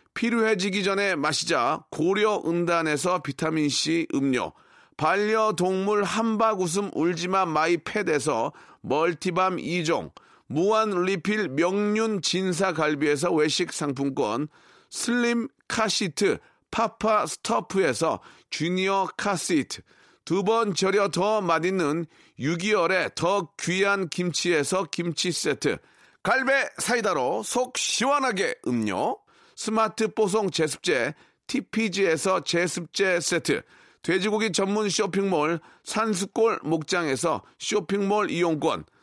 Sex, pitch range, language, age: male, 170-215 Hz, Korean, 40-59